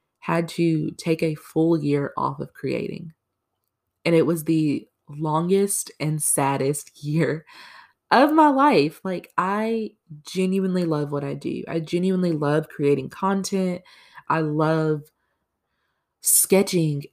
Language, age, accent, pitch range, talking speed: English, 20-39, American, 145-185 Hz, 125 wpm